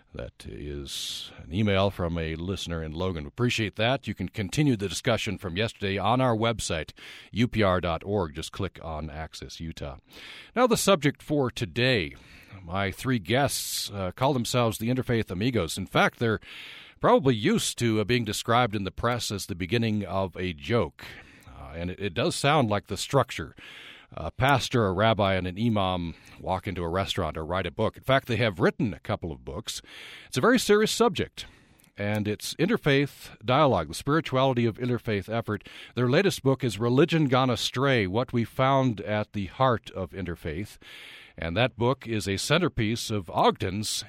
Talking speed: 175 wpm